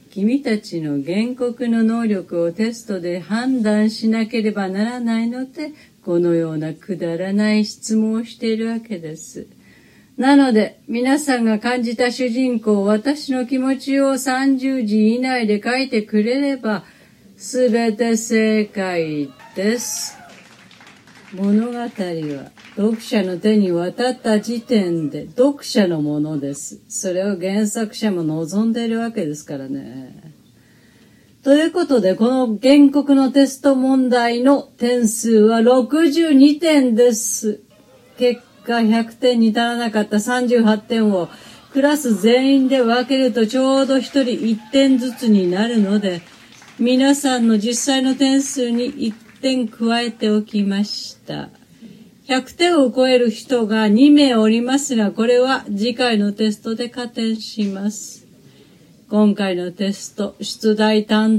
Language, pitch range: Japanese, 210-255 Hz